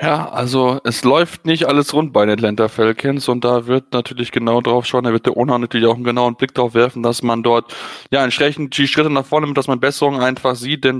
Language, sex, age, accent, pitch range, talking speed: German, male, 20-39, German, 120-140 Hz, 245 wpm